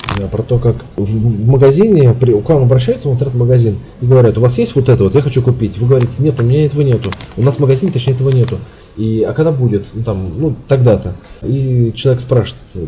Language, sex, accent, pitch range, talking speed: Russian, male, native, 115-140 Hz, 220 wpm